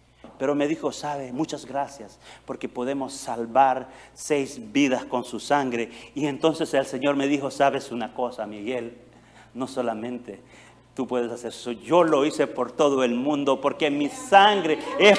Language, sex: Spanish, male